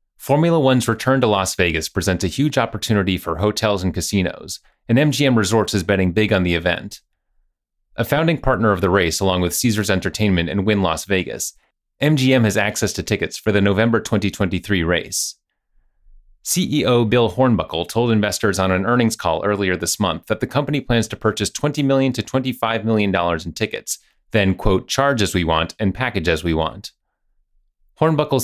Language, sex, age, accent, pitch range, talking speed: English, male, 30-49, American, 95-120 Hz, 175 wpm